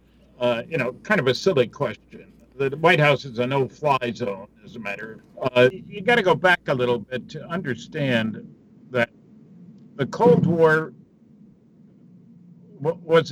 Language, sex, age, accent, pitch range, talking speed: English, male, 60-79, American, 135-205 Hz, 150 wpm